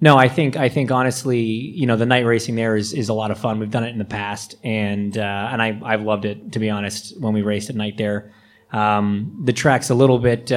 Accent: American